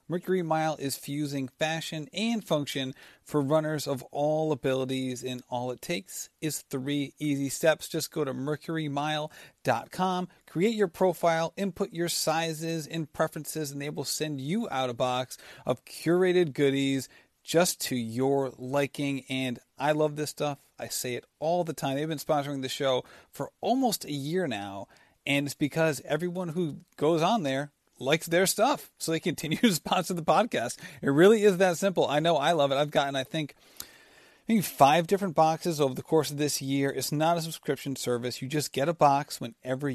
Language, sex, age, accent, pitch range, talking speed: English, male, 40-59, American, 135-170 Hz, 180 wpm